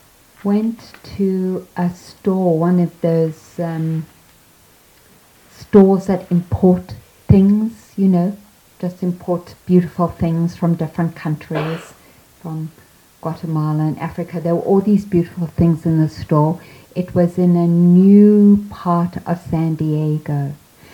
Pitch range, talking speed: 150-180 Hz, 125 wpm